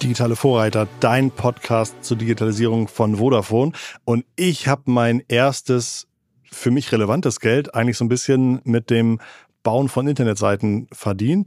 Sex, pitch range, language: male, 110-125 Hz, German